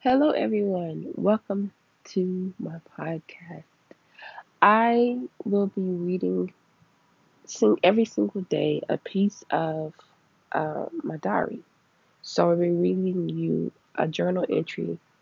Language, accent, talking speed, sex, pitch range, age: English, American, 105 wpm, female, 150-190 Hz, 20-39